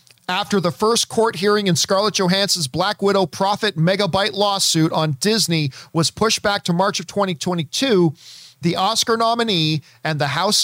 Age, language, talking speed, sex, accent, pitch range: 40-59, English, 160 wpm, male, American, 155-210 Hz